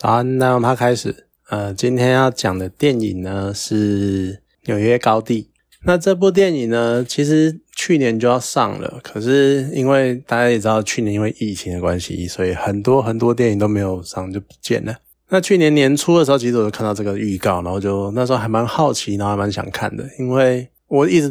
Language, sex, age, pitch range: Chinese, male, 20-39, 100-130 Hz